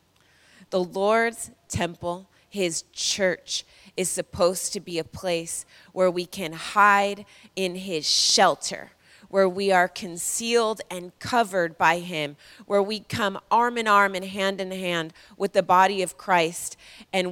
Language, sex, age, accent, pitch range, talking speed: English, female, 20-39, American, 180-230 Hz, 145 wpm